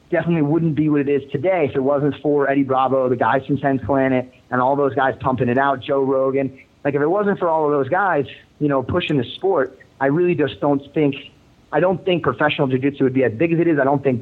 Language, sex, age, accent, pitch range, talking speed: English, male, 30-49, American, 125-150 Hz, 260 wpm